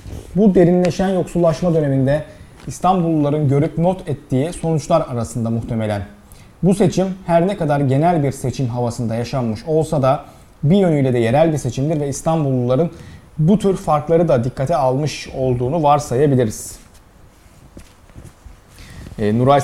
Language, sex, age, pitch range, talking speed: Turkish, male, 40-59, 135-175 Hz, 120 wpm